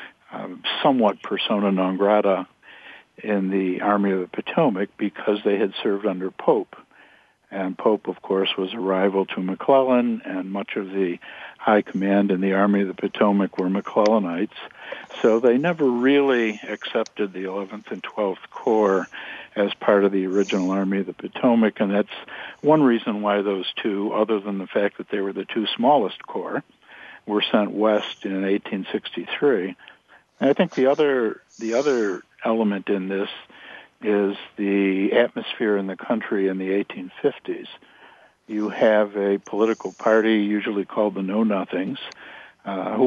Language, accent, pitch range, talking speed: English, American, 95-105 Hz, 155 wpm